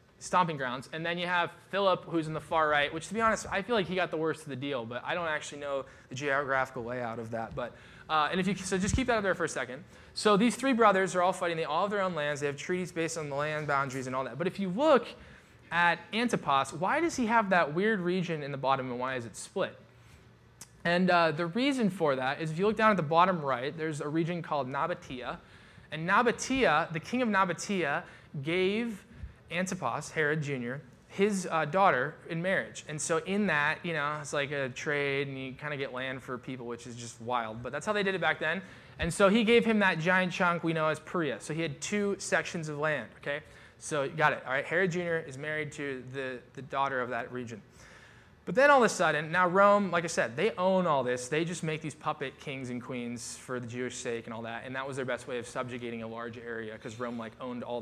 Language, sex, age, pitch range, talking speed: English, male, 20-39, 130-180 Hz, 250 wpm